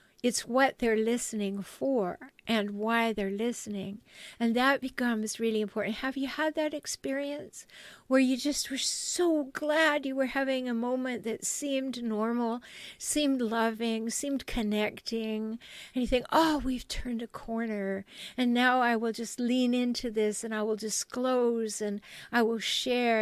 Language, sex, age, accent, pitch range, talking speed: English, female, 50-69, American, 215-260 Hz, 160 wpm